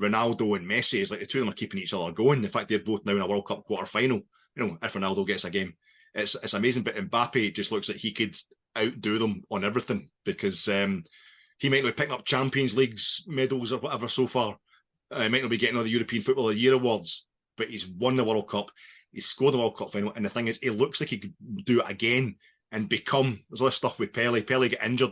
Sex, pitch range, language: male, 110-125 Hz, English